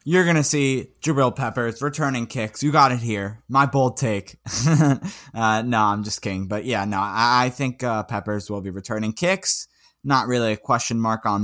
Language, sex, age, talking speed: English, male, 10-29, 195 wpm